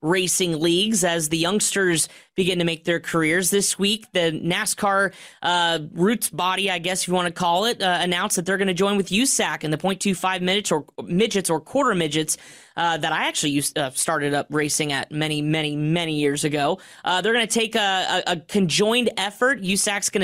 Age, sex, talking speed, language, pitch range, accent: 20-39, female, 205 wpm, English, 165-195 Hz, American